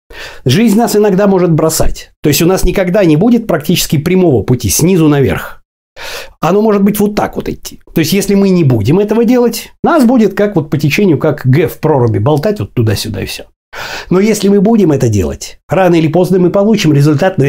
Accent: native